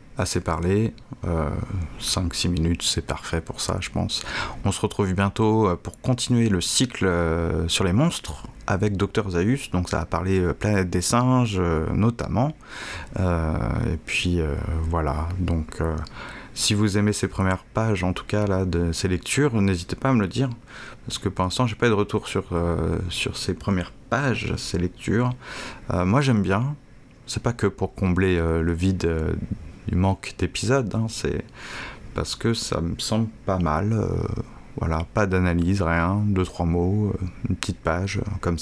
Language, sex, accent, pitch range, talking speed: French, male, French, 90-115 Hz, 180 wpm